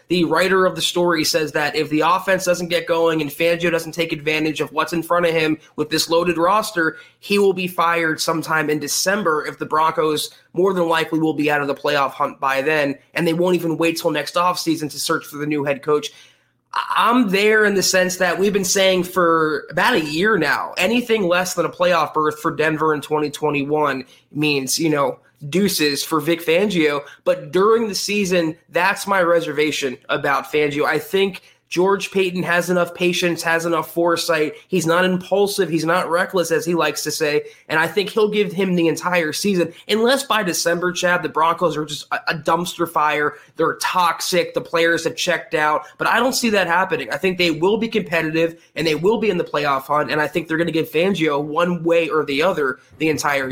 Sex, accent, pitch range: male, American, 155-180 Hz